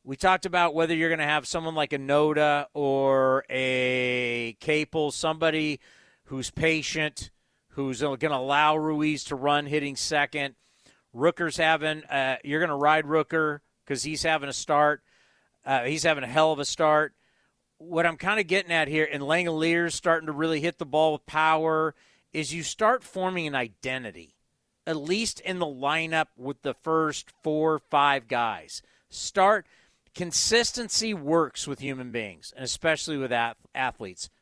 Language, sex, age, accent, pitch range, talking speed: English, male, 40-59, American, 140-170 Hz, 160 wpm